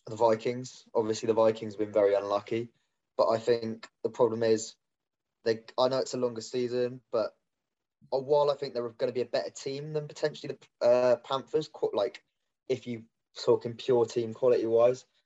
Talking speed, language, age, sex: 175 wpm, English, 20-39, male